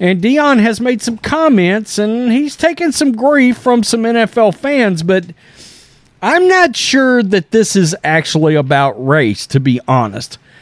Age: 40-59